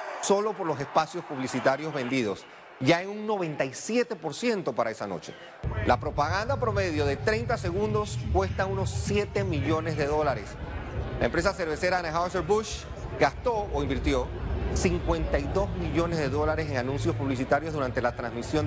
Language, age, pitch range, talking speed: Spanish, 30-49, 130-180 Hz, 135 wpm